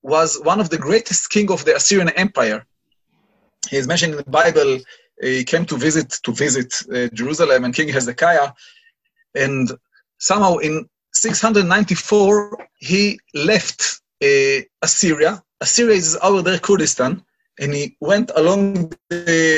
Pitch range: 150-210 Hz